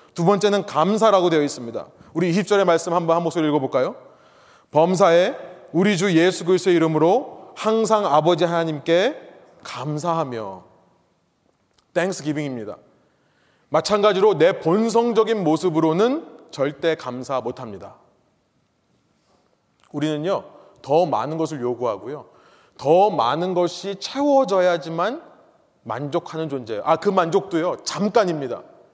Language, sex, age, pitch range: Korean, male, 30-49, 155-220 Hz